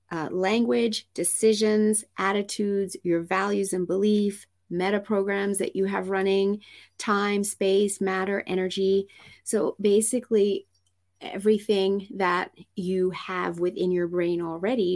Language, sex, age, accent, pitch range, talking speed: English, female, 30-49, American, 175-215 Hz, 110 wpm